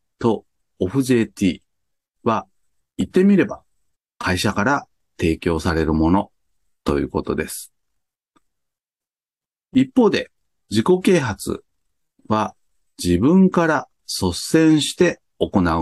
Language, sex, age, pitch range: Japanese, male, 40-59, 85-140 Hz